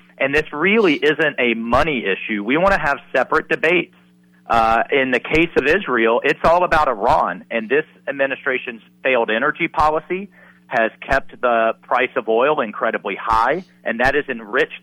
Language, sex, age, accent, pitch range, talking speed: English, male, 40-59, American, 115-145 Hz, 165 wpm